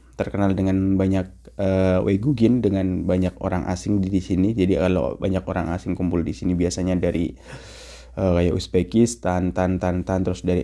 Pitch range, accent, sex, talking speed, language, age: 90-115 Hz, native, male, 175 wpm, Indonesian, 20-39